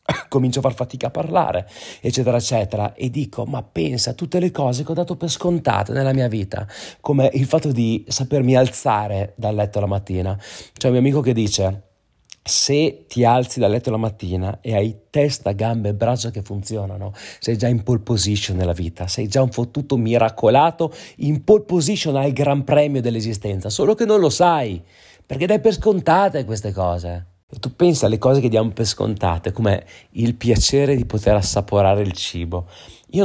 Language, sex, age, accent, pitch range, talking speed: Italian, male, 30-49, native, 100-135 Hz, 185 wpm